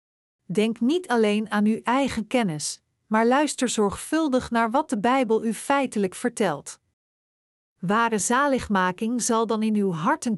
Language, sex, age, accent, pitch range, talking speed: Dutch, female, 50-69, Dutch, 205-250 Hz, 140 wpm